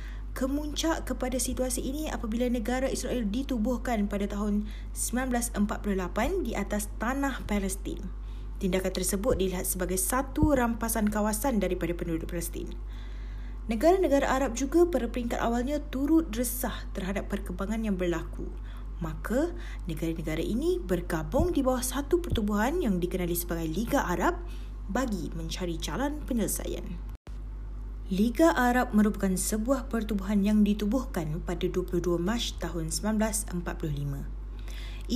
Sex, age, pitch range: female, 20-39, 180-255 Hz